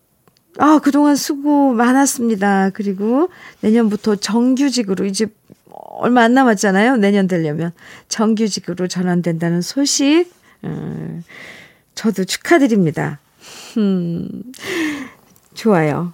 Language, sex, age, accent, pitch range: Korean, female, 40-59, native, 185-255 Hz